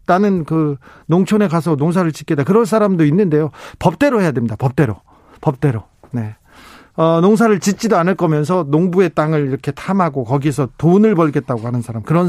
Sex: male